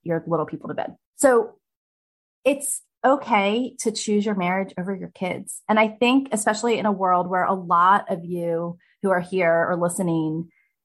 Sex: female